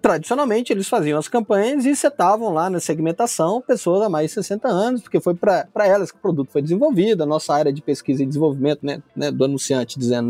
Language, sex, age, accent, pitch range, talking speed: Portuguese, male, 20-39, Brazilian, 155-225 Hz, 215 wpm